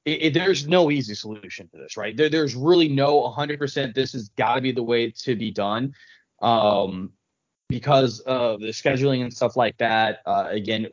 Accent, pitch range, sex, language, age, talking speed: American, 115-145 Hz, male, English, 20-39, 190 wpm